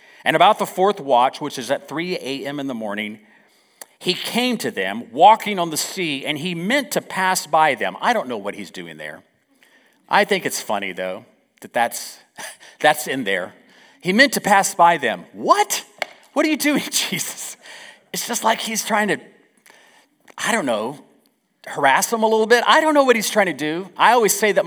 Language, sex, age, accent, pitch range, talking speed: English, male, 40-59, American, 150-225 Hz, 200 wpm